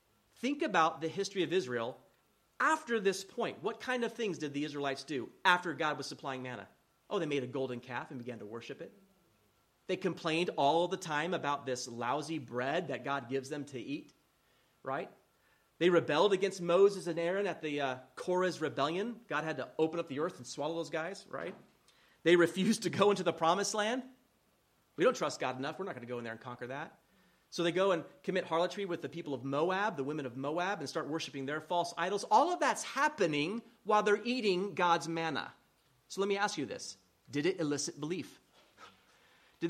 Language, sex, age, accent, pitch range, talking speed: English, male, 30-49, American, 145-210 Hz, 205 wpm